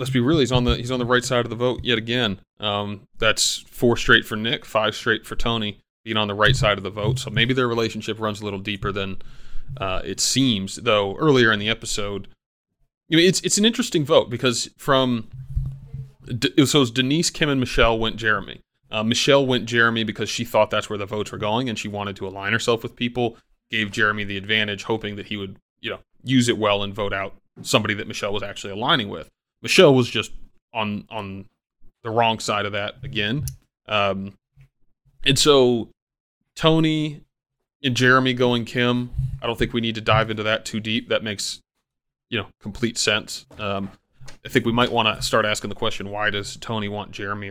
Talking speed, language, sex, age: 210 wpm, English, male, 30-49